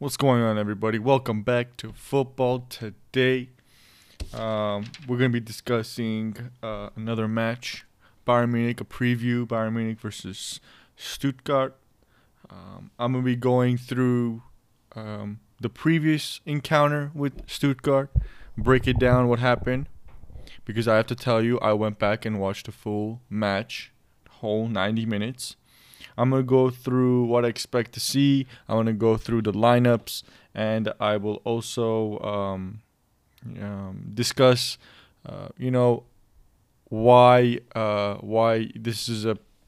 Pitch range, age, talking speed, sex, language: 110-125 Hz, 20-39, 140 wpm, male, English